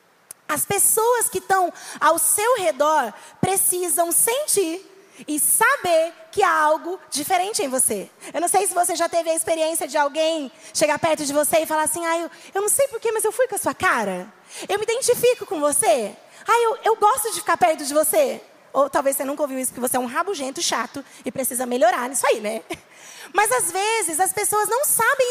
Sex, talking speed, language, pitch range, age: female, 205 wpm, Portuguese, 290-390 Hz, 20-39